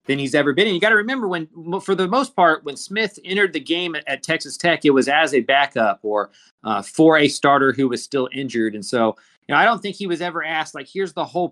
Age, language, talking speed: 30-49, English, 270 wpm